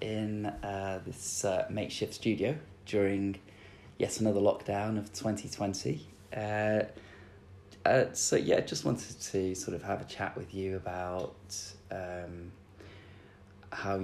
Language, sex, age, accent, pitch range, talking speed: English, male, 20-39, British, 95-105 Hz, 125 wpm